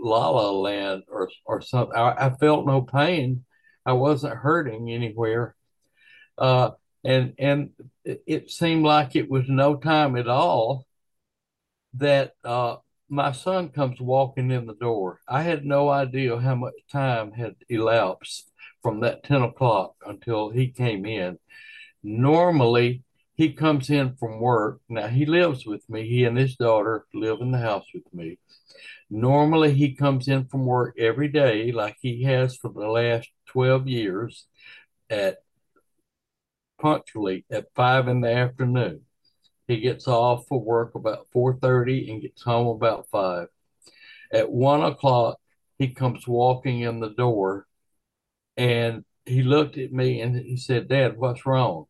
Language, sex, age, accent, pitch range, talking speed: English, male, 60-79, American, 115-140 Hz, 150 wpm